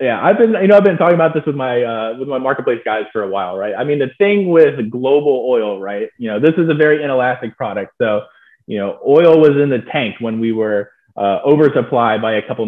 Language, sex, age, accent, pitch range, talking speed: English, male, 20-39, American, 110-145 Hz, 250 wpm